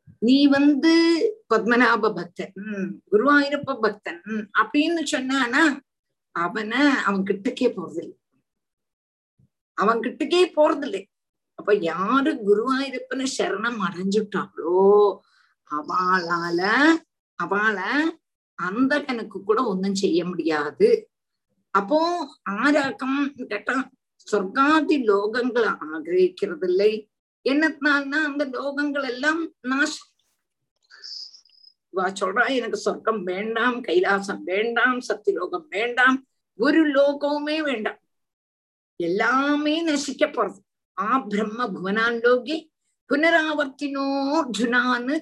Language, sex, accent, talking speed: Tamil, female, native, 75 wpm